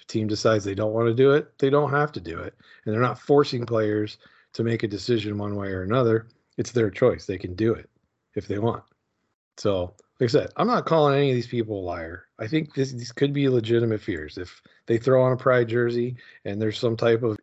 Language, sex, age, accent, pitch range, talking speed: English, male, 40-59, American, 100-120 Hz, 240 wpm